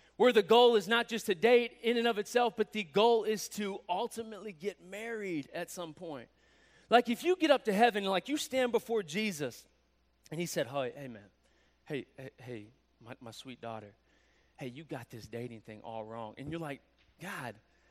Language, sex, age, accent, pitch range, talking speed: English, male, 30-49, American, 170-220 Hz, 200 wpm